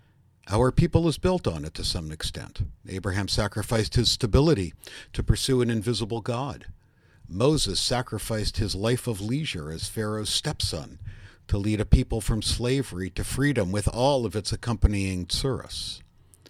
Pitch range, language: 95-120 Hz, English